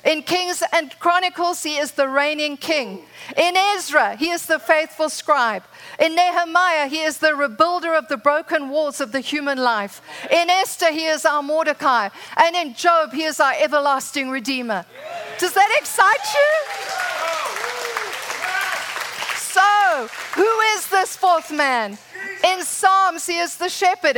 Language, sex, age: English, female, 50-69